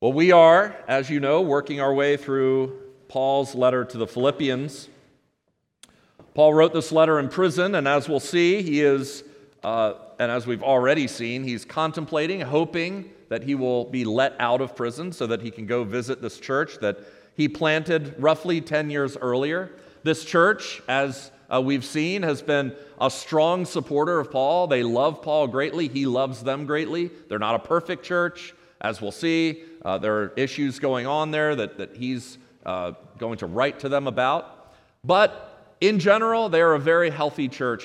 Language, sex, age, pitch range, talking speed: English, male, 40-59, 130-160 Hz, 180 wpm